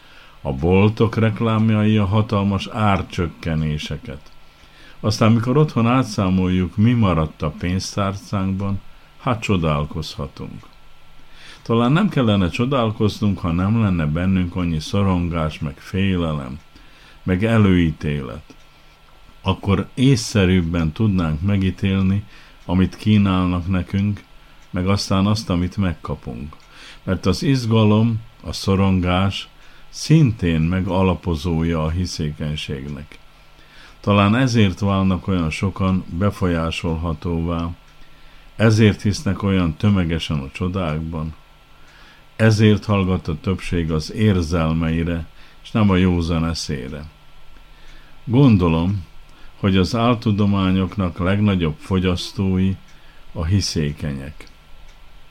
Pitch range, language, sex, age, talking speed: 80-105 Hz, Hungarian, male, 50-69, 90 wpm